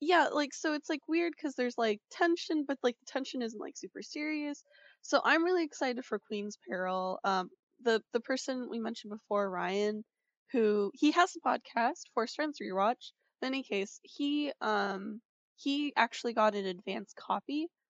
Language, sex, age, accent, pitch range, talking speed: English, female, 10-29, American, 195-270 Hz, 175 wpm